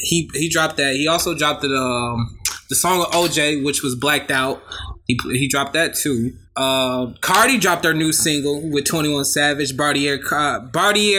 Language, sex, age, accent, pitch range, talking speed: English, male, 20-39, American, 140-180 Hz, 175 wpm